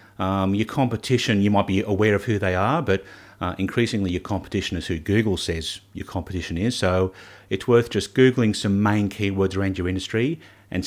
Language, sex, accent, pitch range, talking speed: English, male, Australian, 95-110 Hz, 195 wpm